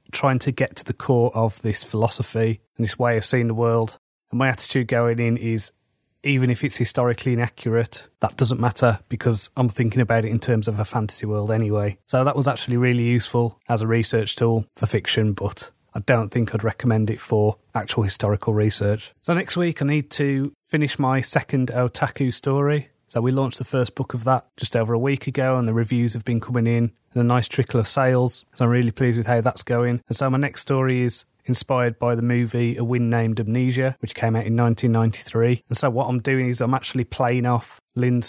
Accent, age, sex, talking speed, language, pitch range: British, 30-49, male, 220 wpm, English, 115-130 Hz